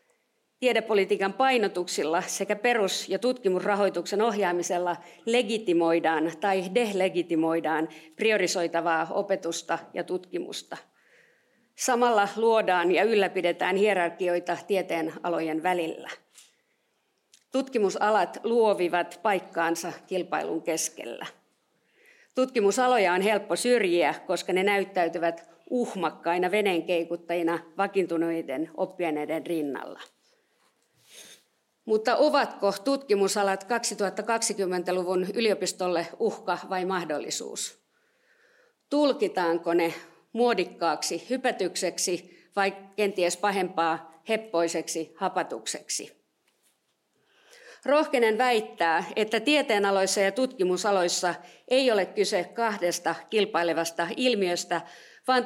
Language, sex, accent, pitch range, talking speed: Finnish, female, native, 170-220 Hz, 75 wpm